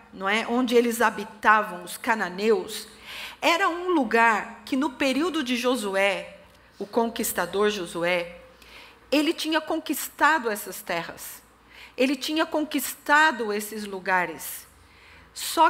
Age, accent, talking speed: 40-59, Brazilian, 105 wpm